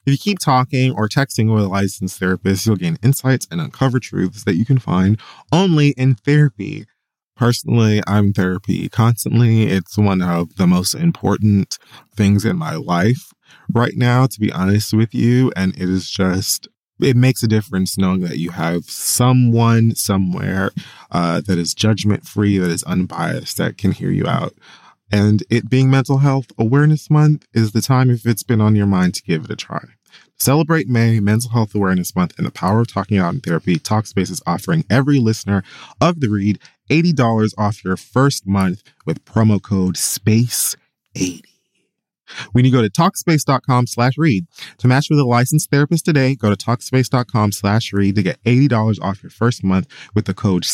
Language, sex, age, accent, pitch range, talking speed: English, male, 20-39, American, 100-130 Hz, 180 wpm